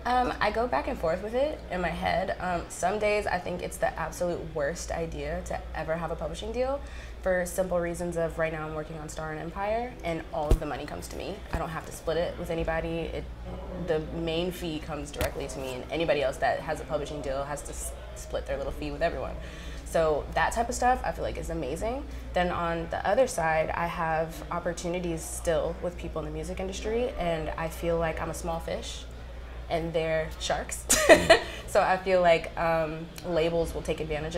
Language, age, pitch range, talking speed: English, 20-39, 145-175 Hz, 215 wpm